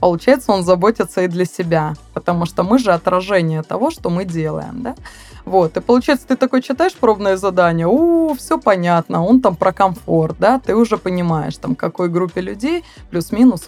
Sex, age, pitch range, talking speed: female, 20-39, 165-205 Hz, 180 wpm